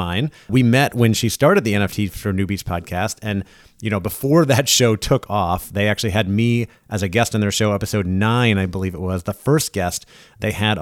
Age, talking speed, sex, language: 30-49, 215 wpm, male, English